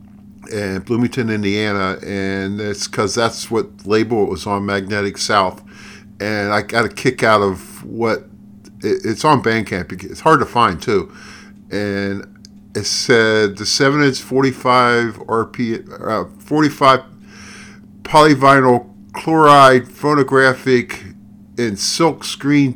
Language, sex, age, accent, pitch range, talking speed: English, male, 50-69, American, 100-125 Hz, 120 wpm